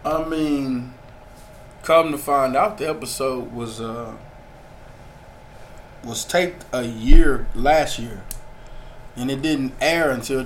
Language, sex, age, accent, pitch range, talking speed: English, male, 20-39, American, 125-155 Hz, 120 wpm